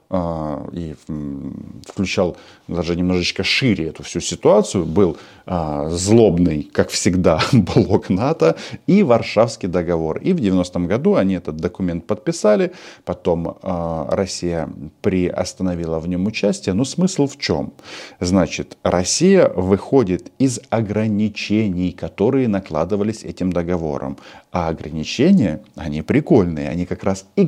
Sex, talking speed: male, 115 wpm